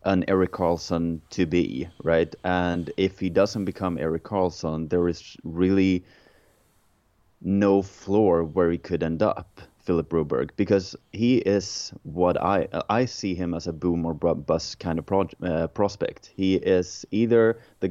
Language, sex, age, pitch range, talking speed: English, male, 20-39, 80-95 Hz, 155 wpm